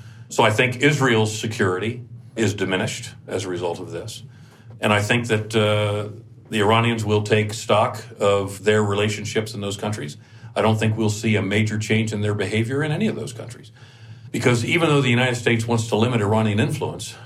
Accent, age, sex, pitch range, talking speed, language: American, 50-69, male, 105-120 Hz, 190 wpm, English